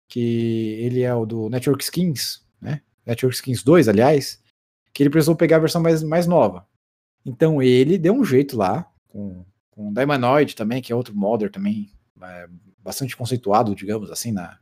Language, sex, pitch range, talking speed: Portuguese, male, 120-175 Hz, 170 wpm